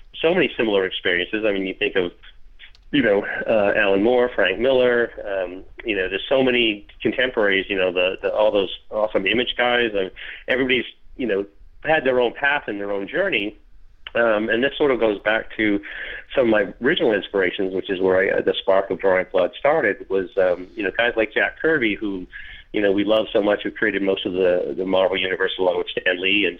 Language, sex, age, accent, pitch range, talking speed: English, male, 40-59, American, 95-115 Hz, 215 wpm